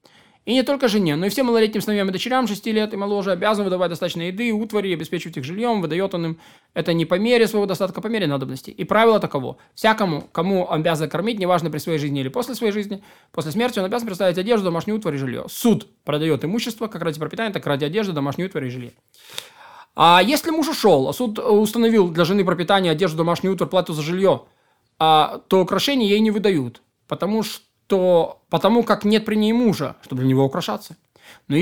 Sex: male